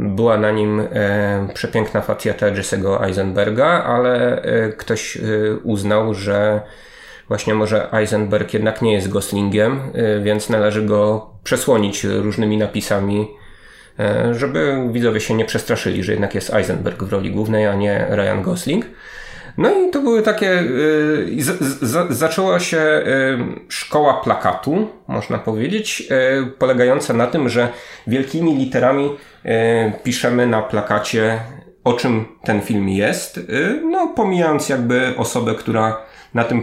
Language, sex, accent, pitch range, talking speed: Polish, male, native, 105-130 Hz, 120 wpm